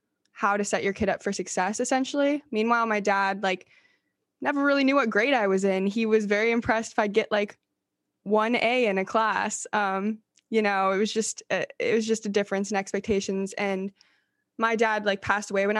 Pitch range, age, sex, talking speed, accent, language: 195-225 Hz, 20-39, female, 205 wpm, American, English